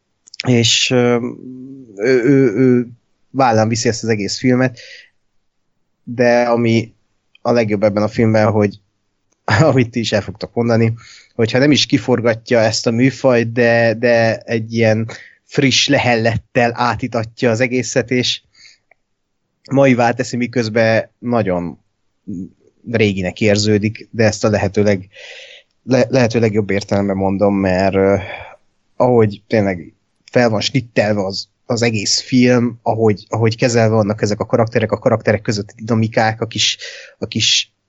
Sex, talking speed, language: male, 135 wpm, Hungarian